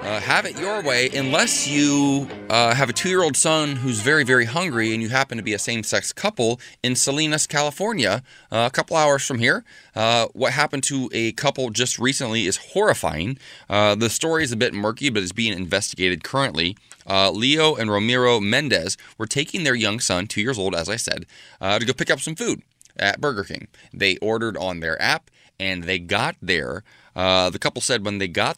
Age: 20-39